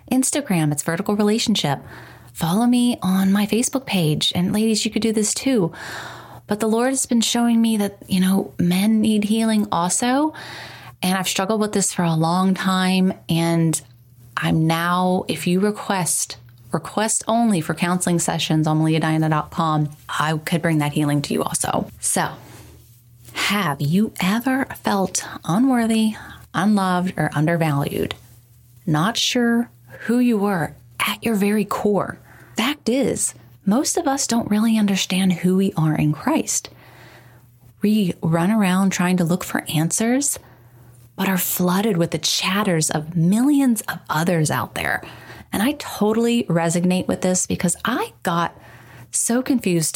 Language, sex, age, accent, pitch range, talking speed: English, female, 30-49, American, 155-215 Hz, 150 wpm